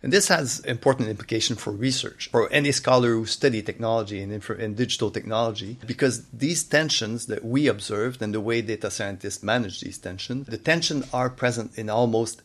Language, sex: English, male